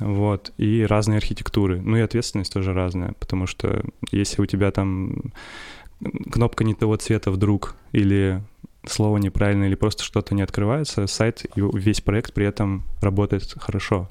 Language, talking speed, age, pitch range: Russian, 155 wpm, 10-29, 100-115 Hz